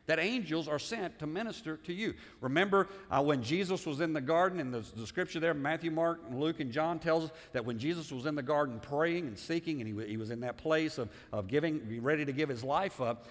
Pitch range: 110-170 Hz